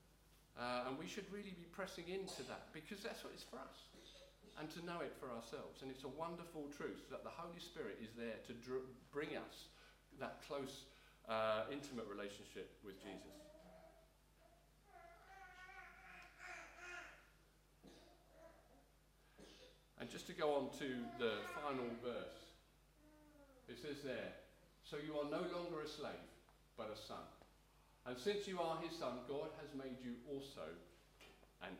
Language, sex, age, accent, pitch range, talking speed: English, male, 40-59, British, 130-190 Hz, 145 wpm